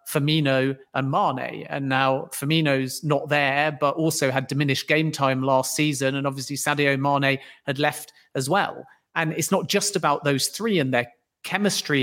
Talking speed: 170 wpm